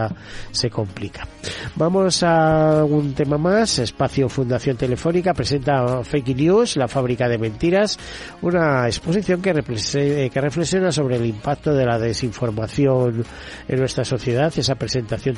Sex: male